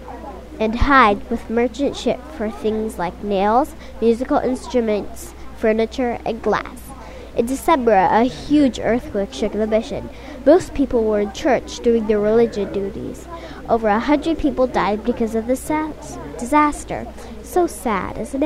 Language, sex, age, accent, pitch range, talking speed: English, female, 10-29, American, 215-280 Hz, 140 wpm